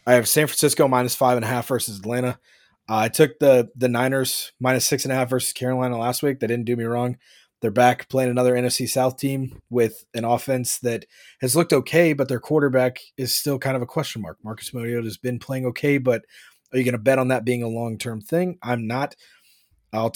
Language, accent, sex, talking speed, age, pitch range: English, American, male, 225 wpm, 30-49, 110-135 Hz